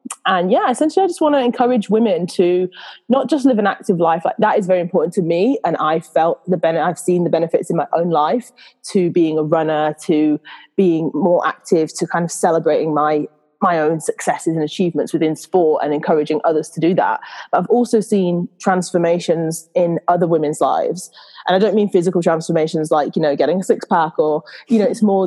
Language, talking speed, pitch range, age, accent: English, 210 wpm, 165-190 Hz, 20-39, British